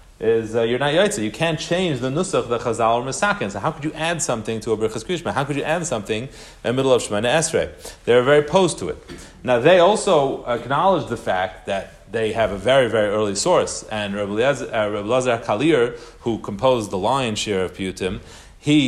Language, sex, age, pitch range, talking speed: English, male, 30-49, 120-155 Hz, 220 wpm